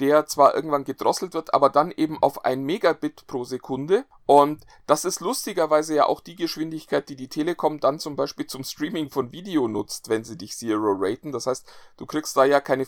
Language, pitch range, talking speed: German, 135-160 Hz, 205 wpm